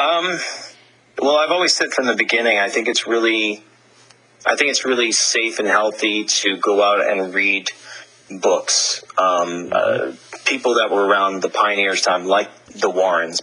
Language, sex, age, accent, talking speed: English, male, 30-49, American, 165 wpm